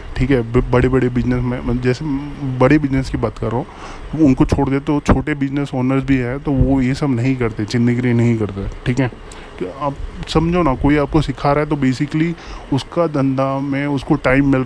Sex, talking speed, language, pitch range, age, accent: male, 185 wpm, Hindi, 120-140 Hz, 20-39, native